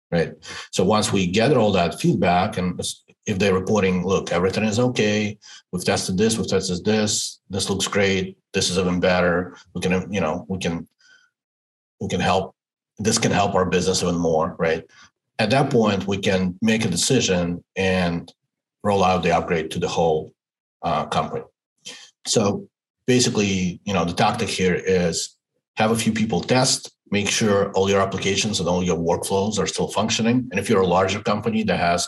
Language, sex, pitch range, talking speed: English, male, 90-100 Hz, 180 wpm